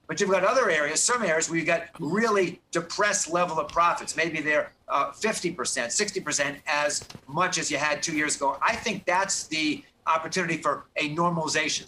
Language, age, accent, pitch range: English, 50-69, American, 160-195 Hz